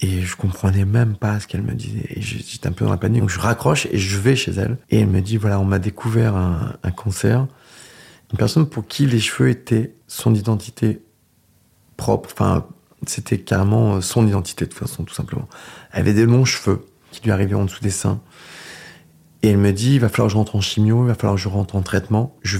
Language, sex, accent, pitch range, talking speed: French, male, French, 100-120 Hz, 235 wpm